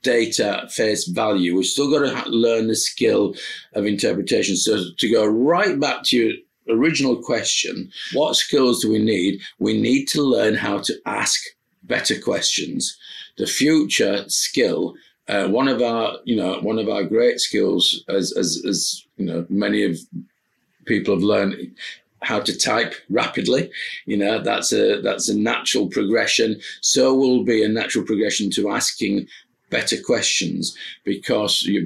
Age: 50-69